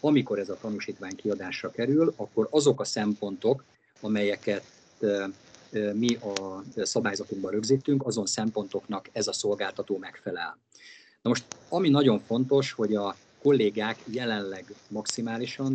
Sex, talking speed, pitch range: male, 120 wpm, 100-120 Hz